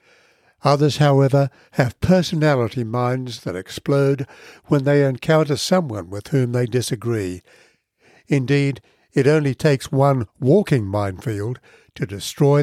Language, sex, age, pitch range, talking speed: English, male, 60-79, 115-145 Hz, 115 wpm